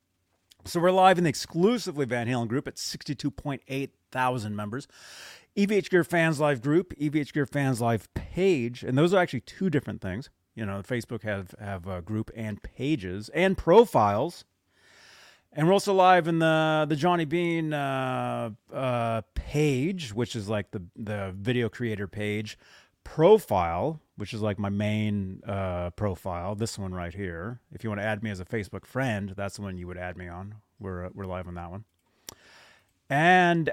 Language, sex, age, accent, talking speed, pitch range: English, male, 30-49, American, 180 wpm, 105-155 Hz